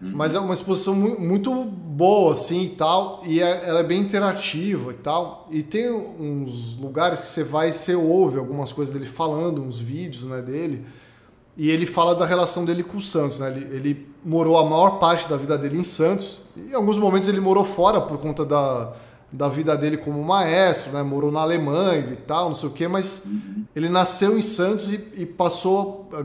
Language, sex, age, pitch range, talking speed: Portuguese, male, 20-39, 145-185 Hz, 205 wpm